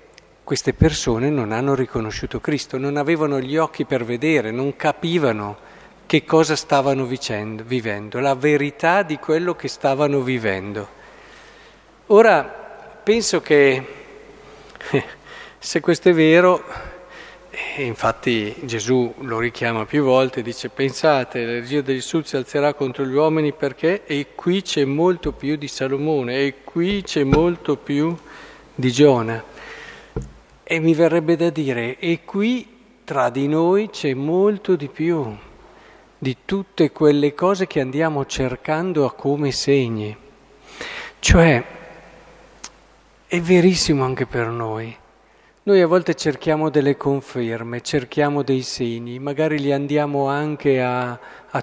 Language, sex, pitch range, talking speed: Italian, male, 130-165 Hz, 130 wpm